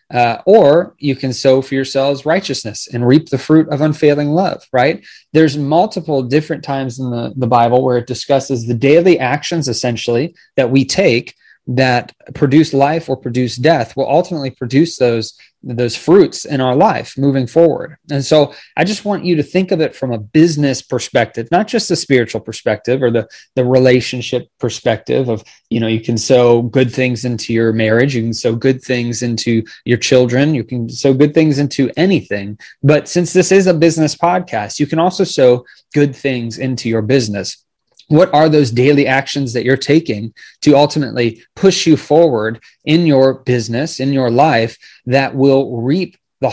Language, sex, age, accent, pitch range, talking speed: English, male, 20-39, American, 120-150 Hz, 180 wpm